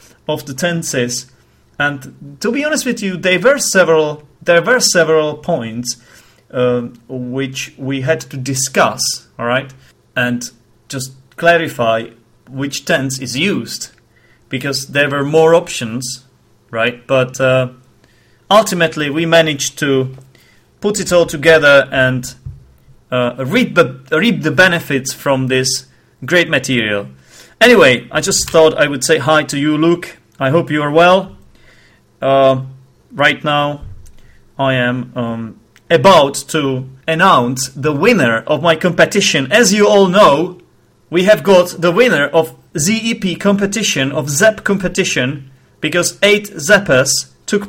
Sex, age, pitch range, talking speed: male, 30-49, 130-170 Hz, 135 wpm